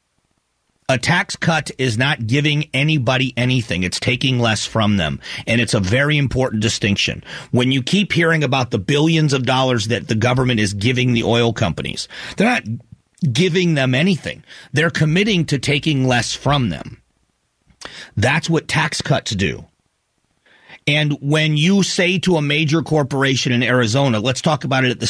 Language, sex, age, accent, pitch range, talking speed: English, male, 40-59, American, 120-155 Hz, 165 wpm